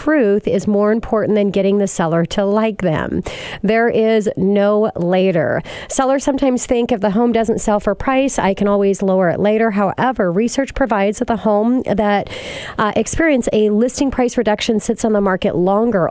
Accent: American